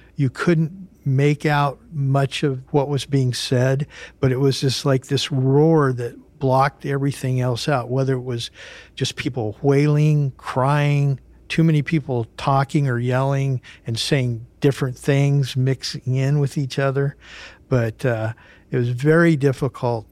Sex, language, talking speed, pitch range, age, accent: male, English, 150 wpm, 125-150 Hz, 60-79, American